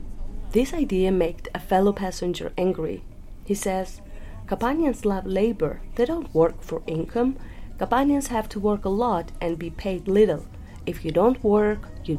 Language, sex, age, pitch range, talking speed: English, female, 30-49, 160-210 Hz, 160 wpm